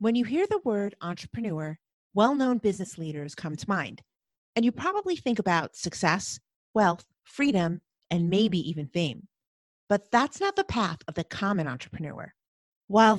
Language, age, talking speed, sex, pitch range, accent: English, 30-49, 155 wpm, female, 165-235 Hz, American